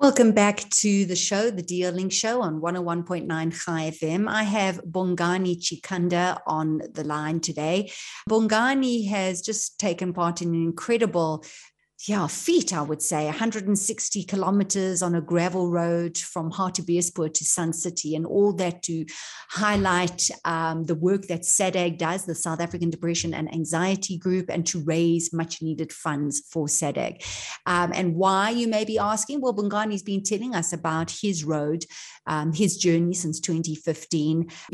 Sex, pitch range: female, 165-205 Hz